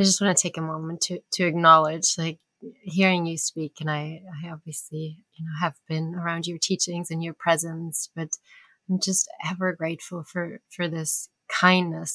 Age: 30-49